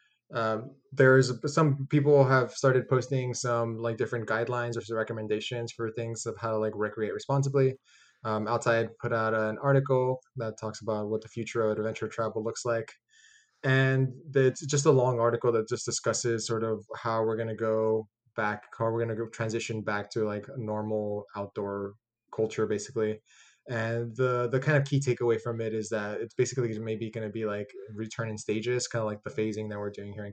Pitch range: 110-125 Hz